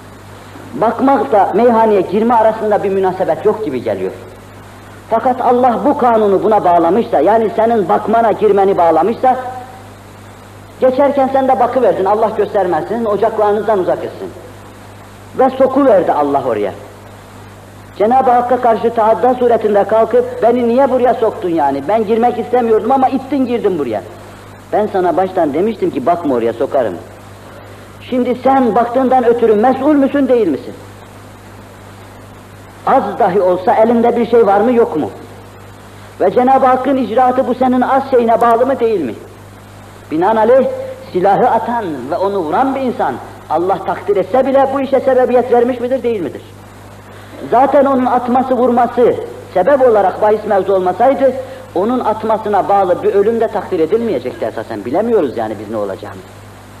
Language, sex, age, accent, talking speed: Turkish, female, 50-69, native, 140 wpm